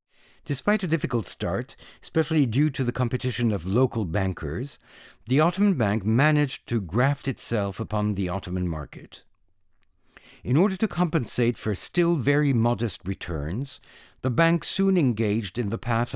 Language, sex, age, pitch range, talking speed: English, male, 60-79, 100-140 Hz, 145 wpm